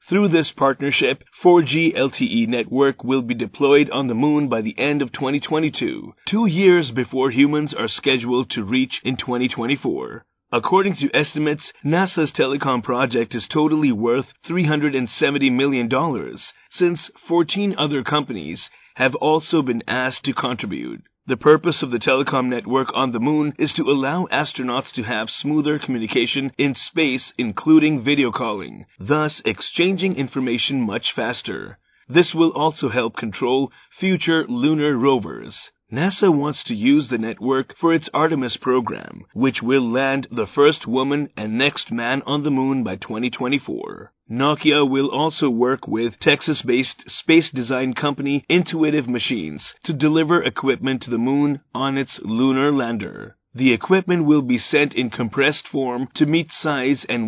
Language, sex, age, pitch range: Japanese, male, 30-49, 125-155 Hz